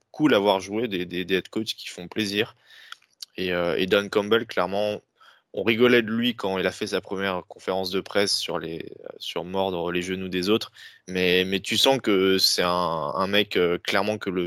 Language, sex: French, male